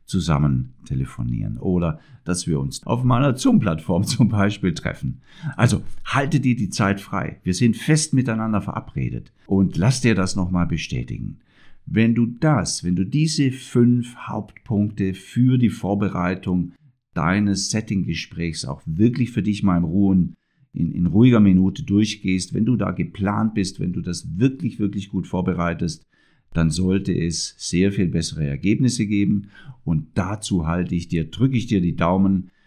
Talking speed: 155 wpm